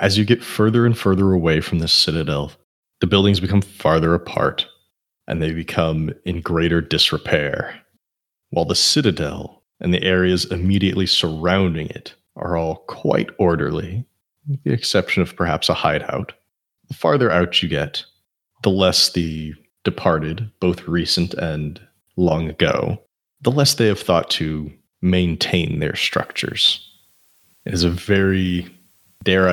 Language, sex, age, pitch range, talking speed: English, male, 30-49, 80-100 Hz, 140 wpm